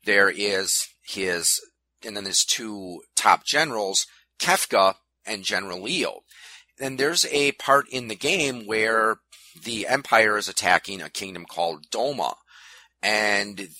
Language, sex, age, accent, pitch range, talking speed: English, male, 30-49, American, 95-135 Hz, 130 wpm